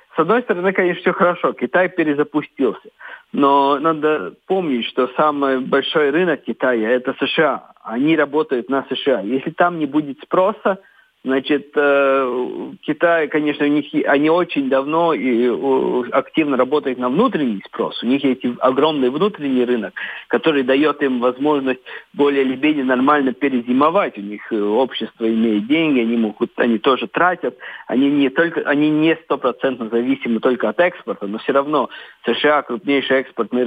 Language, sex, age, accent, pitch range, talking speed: Russian, male, 50-69, native, 125-160 Hz, 140 wpm